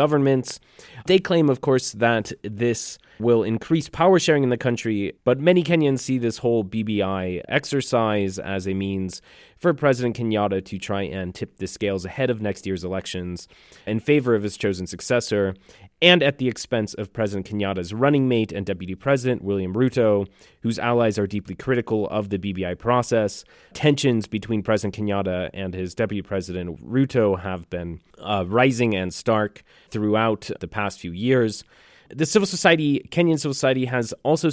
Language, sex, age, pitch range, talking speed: English, male, 30-49, 100-130 Hz, 165 wpm